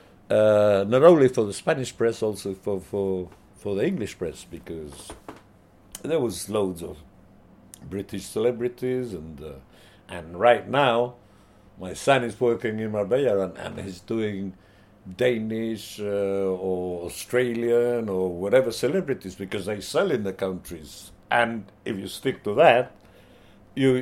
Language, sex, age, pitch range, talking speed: English, male, 60-79, 95-120 Hz, 140 wpm